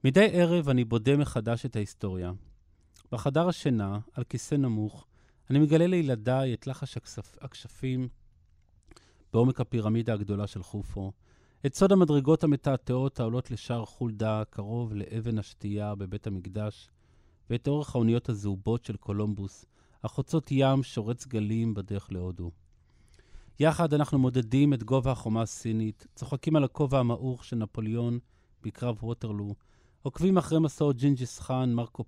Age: 30-49